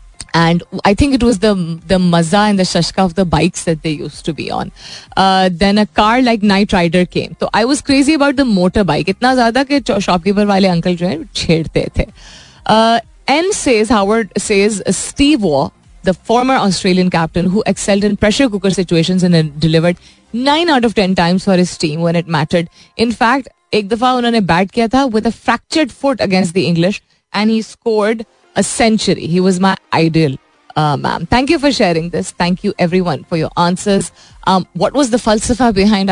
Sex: female